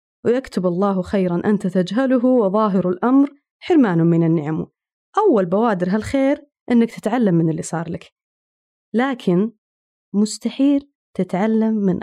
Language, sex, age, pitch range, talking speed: Arabic, female, 20-39, 185-255 Hz, 115 wpm